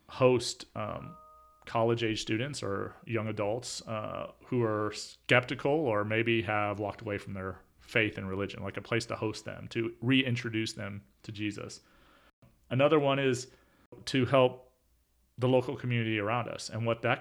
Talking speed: 155 wpm